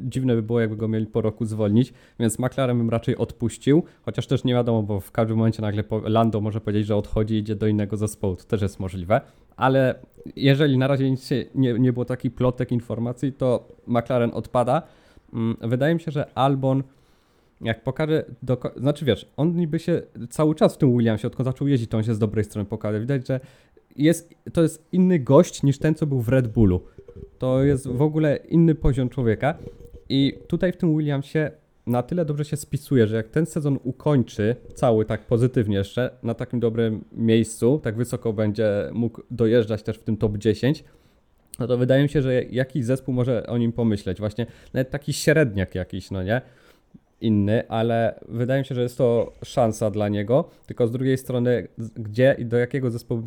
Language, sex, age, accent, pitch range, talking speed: Polish, male, 20-39, native, 110-135 Hz, 195 wpm